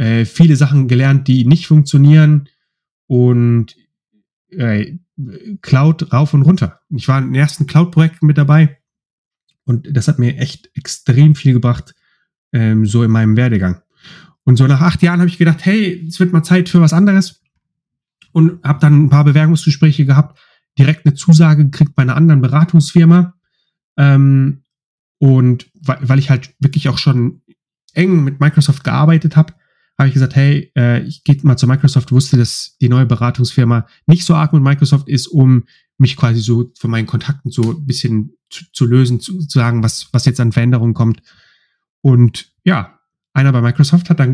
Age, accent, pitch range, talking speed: 30-49, German, 125-160 Hz, 175 wpm